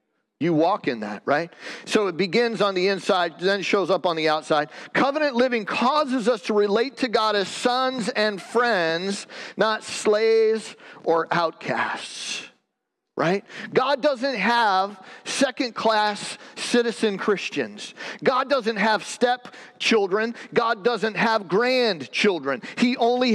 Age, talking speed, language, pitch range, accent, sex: 40-59, 130 wpm, English, 190-245 Hz, American, male